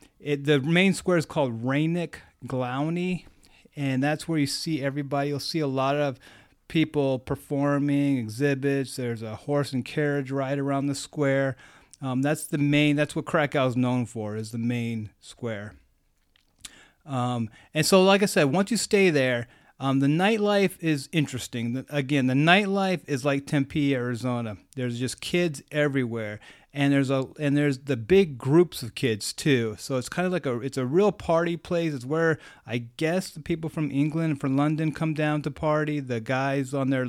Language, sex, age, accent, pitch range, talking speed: English, male, 30-49, American, 125-150 Hz, 185 wpm